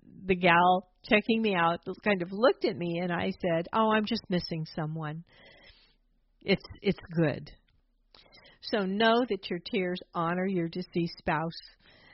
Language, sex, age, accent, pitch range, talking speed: English, female, 50-69, American, 165-220 Hz, 150 wpm